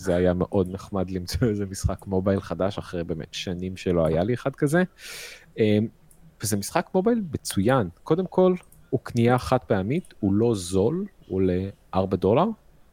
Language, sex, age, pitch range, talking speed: Hebrew, male, 30-49, 95-125 Hz, 155 wpm